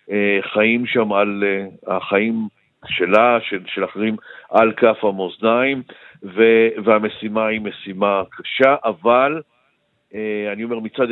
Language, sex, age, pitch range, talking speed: Hebrew, male, 50-69, 100-115 Hz, 120 wpm